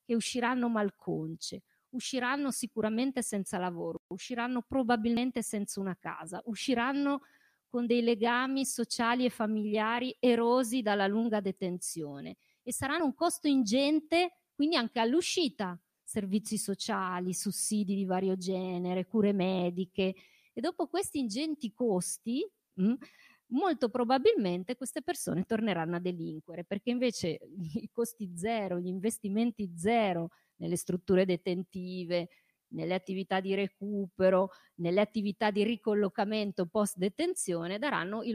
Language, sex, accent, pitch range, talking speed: Italian, female, native, 180-240 Hz, 115 wpm